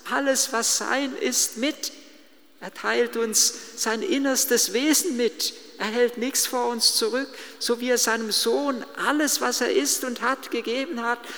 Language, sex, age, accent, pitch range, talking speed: German, male, 50-69, German, 230-370 Hz, 165 wpm